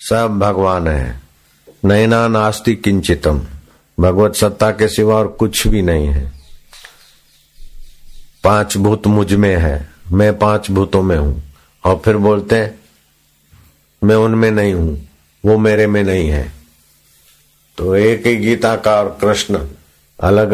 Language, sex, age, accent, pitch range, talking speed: Hindi, male, 50-69, native, 75-105 Hz, 130 wpm